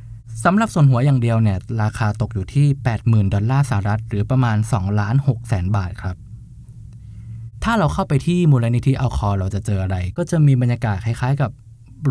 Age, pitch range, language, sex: 20-39, 110-135 Hz, Thai, male